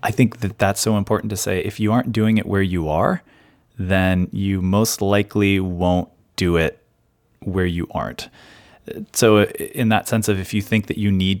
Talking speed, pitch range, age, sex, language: 195 wpm, 90-110 Hz, 30-49, male, English